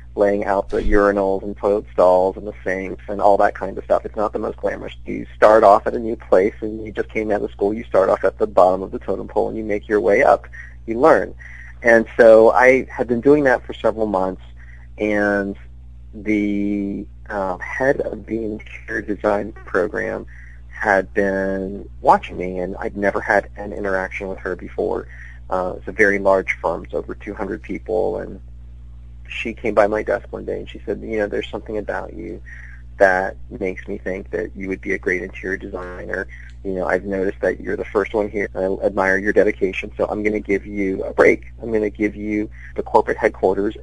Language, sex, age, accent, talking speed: English, male, 40-59, American, 210 wpm